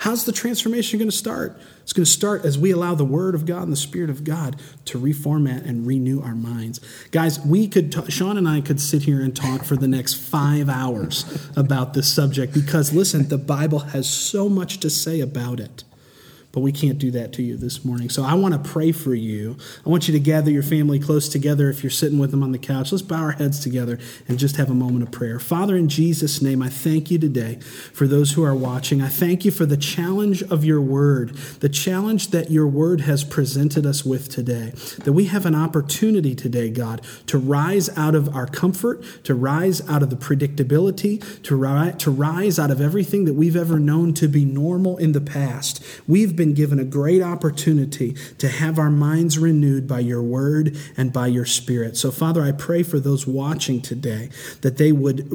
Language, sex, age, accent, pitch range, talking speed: English, male, 30-49, American, 135-165 Hz, 215 wpm